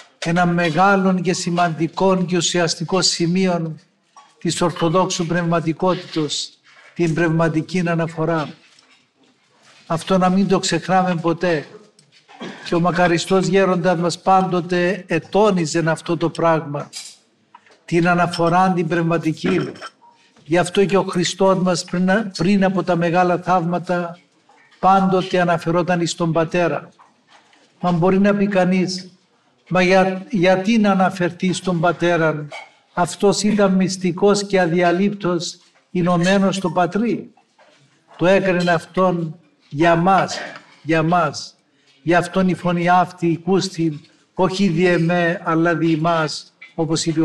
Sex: male